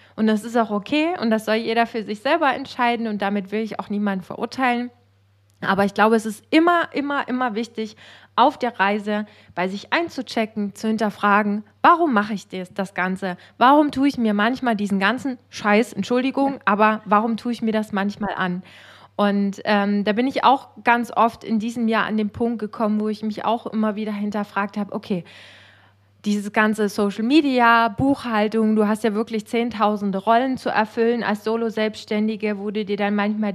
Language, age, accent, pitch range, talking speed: German, 20-39, German, 210-245 Hz, 180 wpm